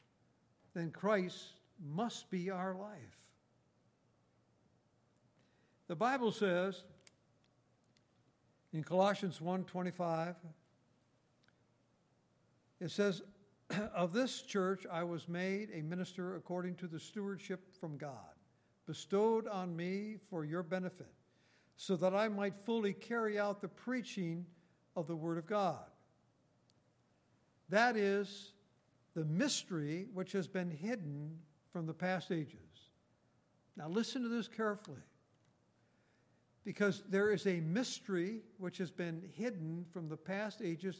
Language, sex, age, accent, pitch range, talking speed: English, male, 60-79, American, 165-205 Hz, 115 wpm